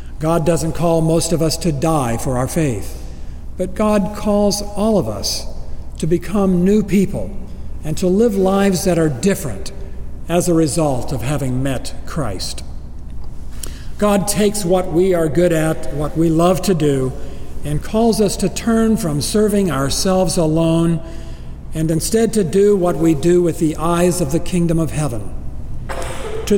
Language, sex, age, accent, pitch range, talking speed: English, male, 60-79, American, 140-195 Hz, 165 wpm